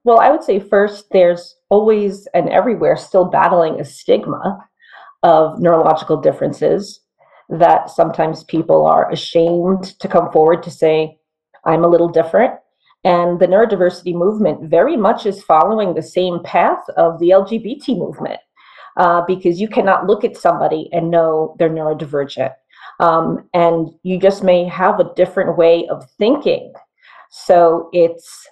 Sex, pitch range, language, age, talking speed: female, 165-195 Hz, English, 40-59, 145 wpm